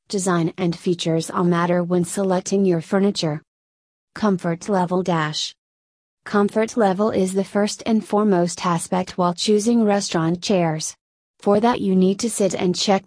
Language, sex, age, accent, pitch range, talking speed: English, female, 30-49, American, 175-205 Hz, 145 wpm